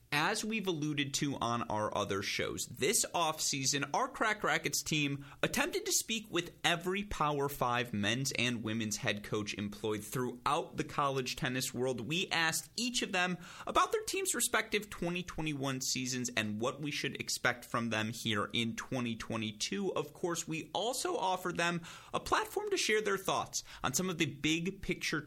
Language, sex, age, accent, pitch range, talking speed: English, male, 30-49, American, 115-175 Hz, 170 wpm